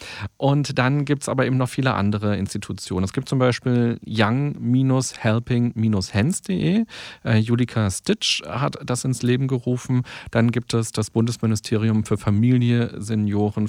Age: 40-59